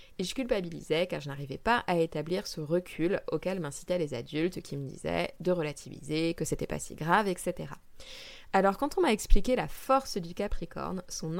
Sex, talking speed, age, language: female, 190 wpm, 20-39, French